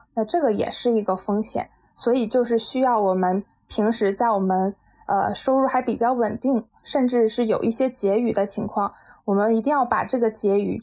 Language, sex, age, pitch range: Chinese, female, 20-39, 210-250 Hz